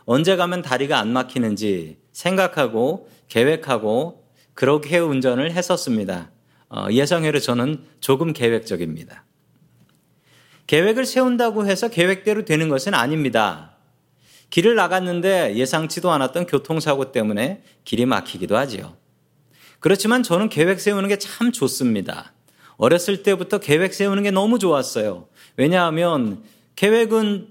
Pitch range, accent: 135-200 Hz, native